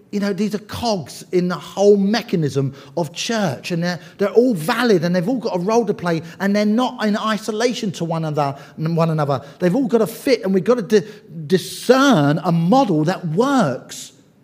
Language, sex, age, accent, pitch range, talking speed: English, male, 40-59, British, 135-220 Hz, 205 wpm